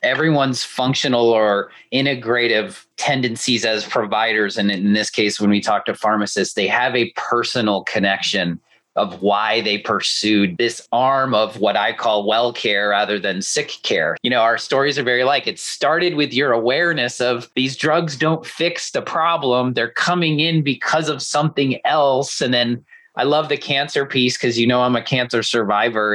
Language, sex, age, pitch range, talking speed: English, male, 30-49, 120-155 Hz, 175 wpm